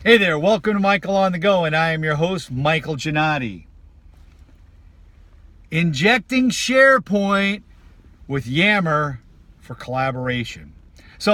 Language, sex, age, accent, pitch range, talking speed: English, male, 50-69, American, 125-175 Hz, 115 wpm